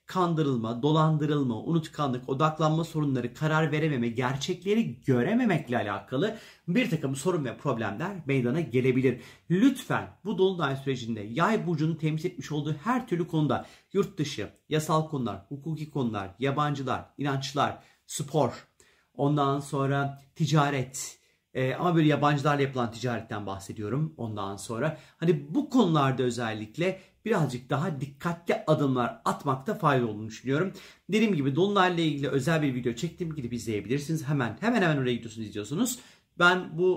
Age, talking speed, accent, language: 40-59, 130 wpm, native, Turkish